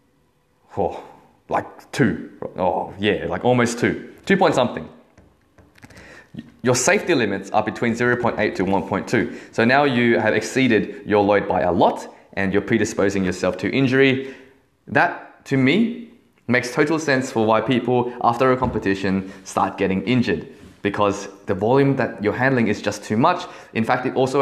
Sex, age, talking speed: male, 20-39, 155 wpm